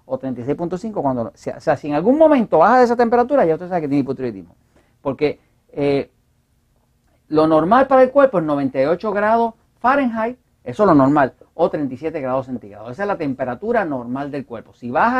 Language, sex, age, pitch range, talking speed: Spanish, male, 50-69, 135-215 Hz, 185 wpm